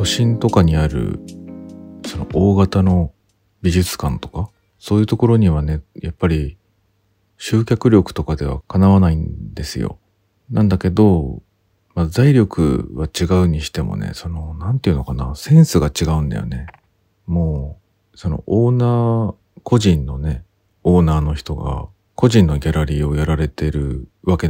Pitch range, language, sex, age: 80-100 Hz, Japanese, male, 40-59